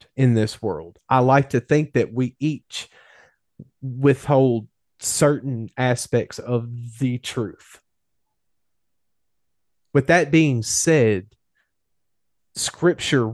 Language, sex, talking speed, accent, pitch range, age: English, male, 95 wpm, American, 120-155 Hz, 30-49